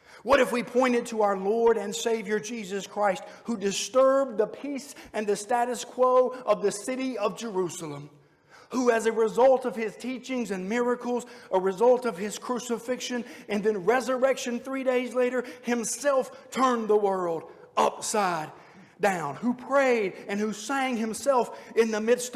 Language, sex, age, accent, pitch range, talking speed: English, male, 50-69, American, 210-255 Hz, 160 wpm